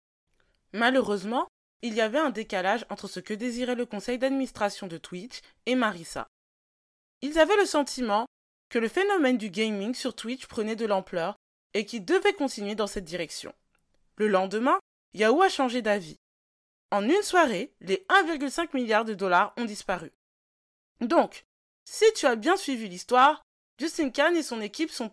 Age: 20-39